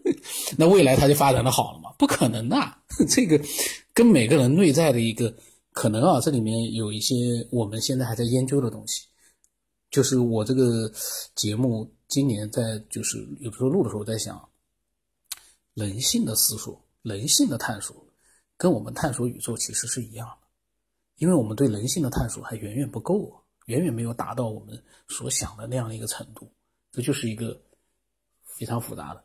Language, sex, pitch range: Chinese, male, 115-145 Hz